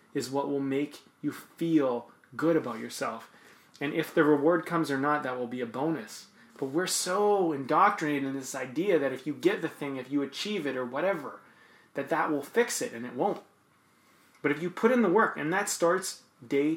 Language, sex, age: English, male, 30-49